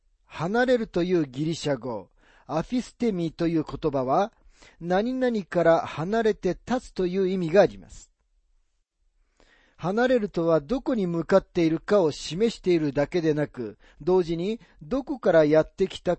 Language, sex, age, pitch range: Japanese, male, 40-59, 140-210 Hz